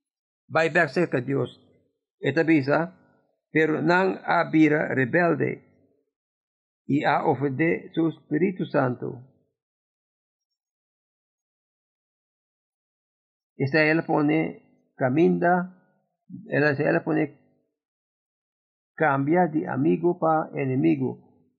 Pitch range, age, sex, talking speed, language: 140-185 Hz, 50-69, male, 80 wpm, English